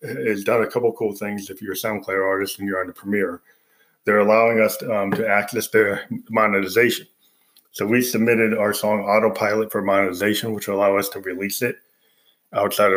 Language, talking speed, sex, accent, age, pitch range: English, 190 wpm, male, American, 20-39, 100-110 Hz